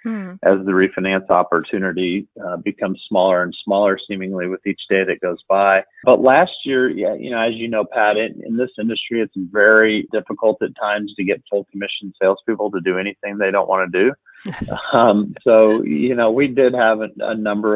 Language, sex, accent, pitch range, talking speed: English, male, American, 95-110 Hz, 195 wpm